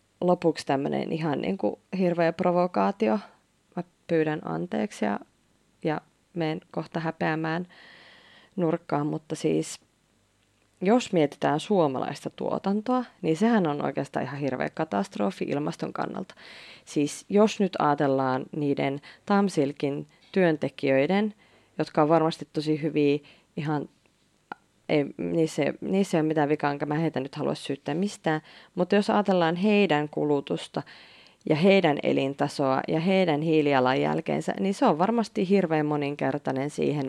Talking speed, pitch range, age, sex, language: 120 wpm, 145-180 Hz, 30-49, female, Finnish